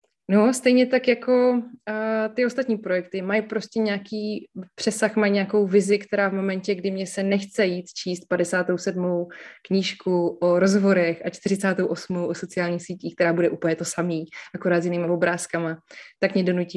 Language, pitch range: Czech, 175-200 Hz